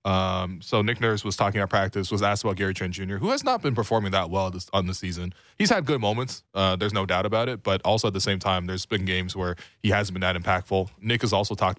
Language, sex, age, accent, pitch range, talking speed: English, male, 20-39, American, 95-110 Hz, 280 wpm